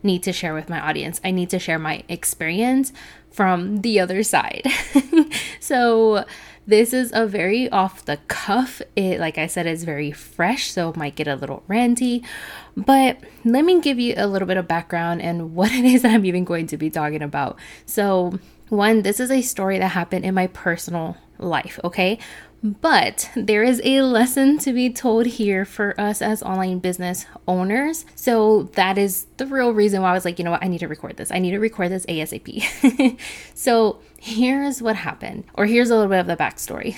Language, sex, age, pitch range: English, female, 10-29, 175-230 Hz